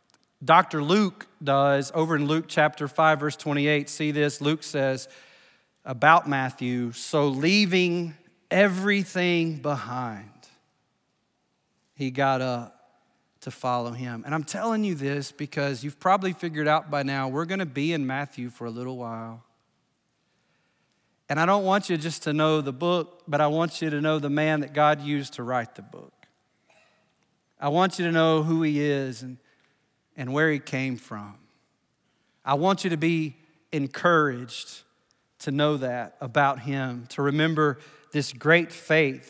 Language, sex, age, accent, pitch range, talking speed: English, male, 40-59, American, 135-160 Hz, 155 wpm